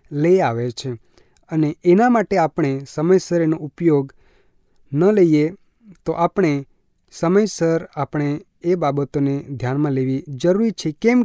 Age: 30-49